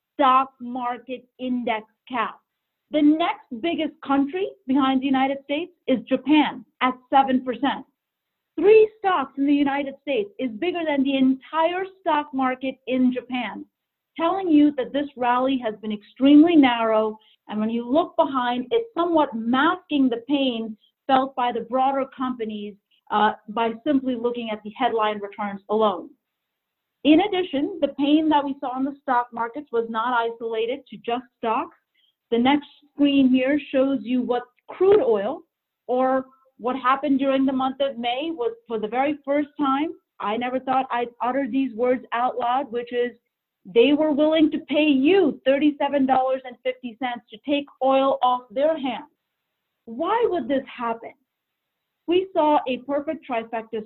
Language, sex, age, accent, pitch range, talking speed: English, female, 40-59, American, 240-290 Hz, 155 wpm